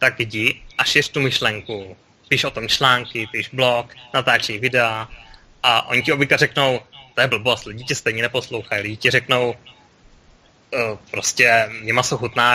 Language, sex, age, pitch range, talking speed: Czech, male, 20-39, 115-140 Hz, 165 wpm